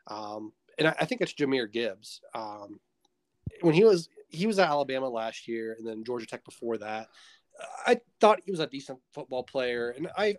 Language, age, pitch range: English, 20-39, 115-145 Hz